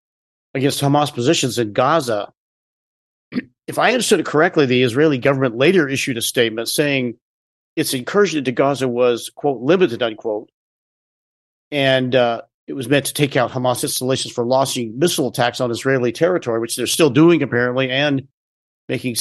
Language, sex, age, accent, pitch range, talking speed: English, male, 40-59, American, 120-145 Hz, 155 wpm